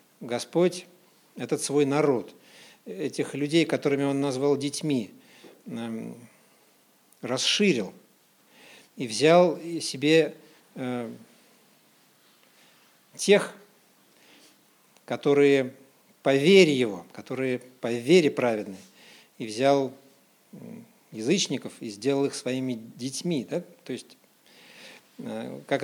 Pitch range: 125-170 Hz